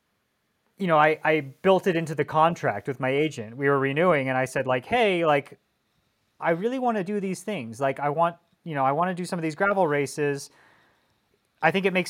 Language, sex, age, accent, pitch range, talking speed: English, male, 30-49, American, 125-155 Hz, 220 wpm